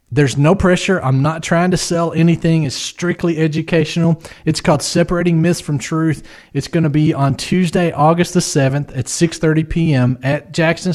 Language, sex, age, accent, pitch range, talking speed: English, male, 40-59, American, 145-180 Hz, 175 wpm